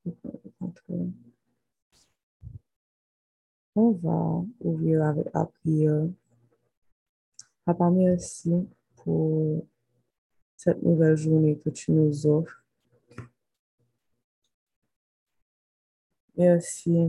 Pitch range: 150-170 Hz